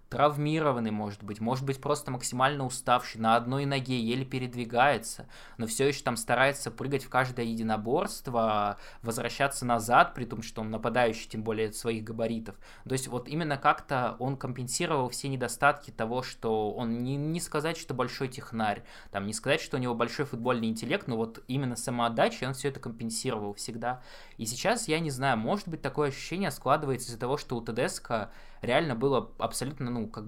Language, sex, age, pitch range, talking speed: Russian, male, 20-39, 115-140 Hz, 175 wpm